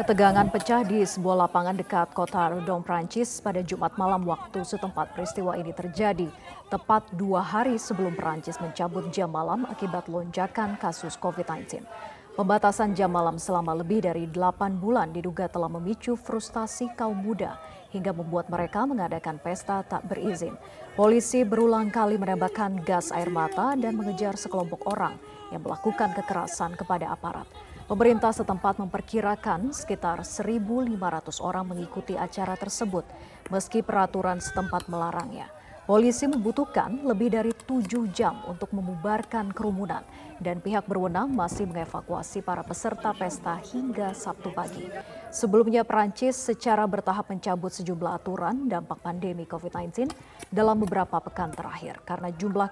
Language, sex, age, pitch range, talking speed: Indonesian, female, 30-49, 175-220 Hz, 130 wpm